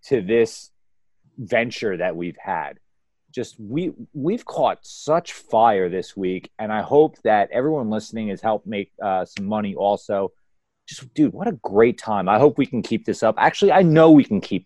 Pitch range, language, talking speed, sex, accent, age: 120-160 Hz, English, 190 wpm, male, American, 30-49